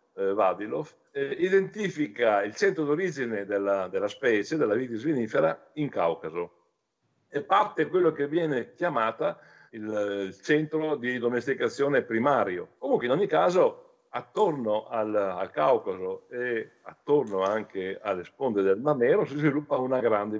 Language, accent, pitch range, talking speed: Italian, native, 105-160 Hz, 135 wpm